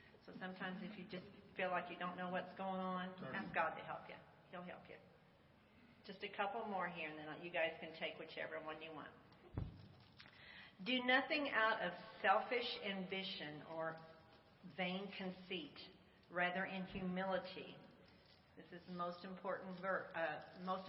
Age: 40-59